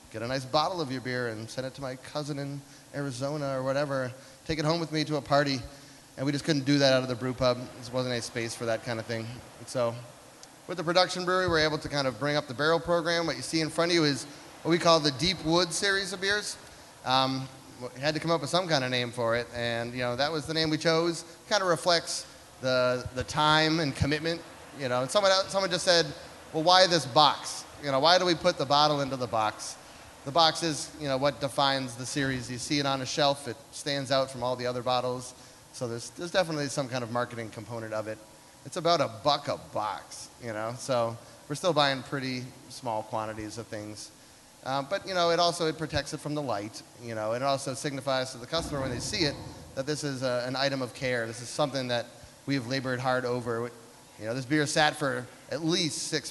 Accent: American